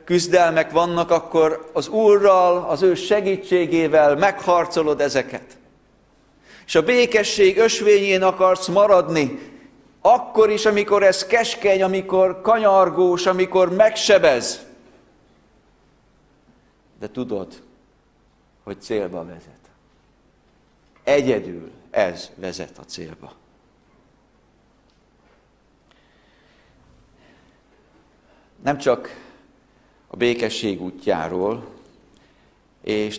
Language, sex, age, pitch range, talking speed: Hungarian, male, 60-79, 130-185 Hz, 70 wpm